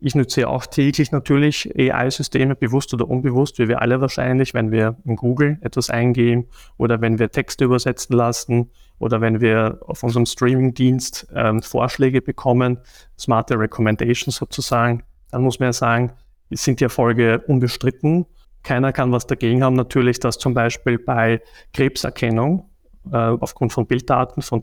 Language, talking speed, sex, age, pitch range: German, 155 wpm, male, 30-49, 120-135 Hz